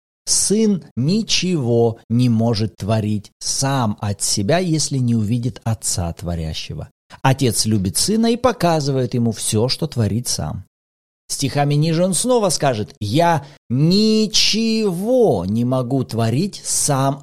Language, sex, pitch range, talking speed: Russian, male, 120-180 Hz, 120 wpm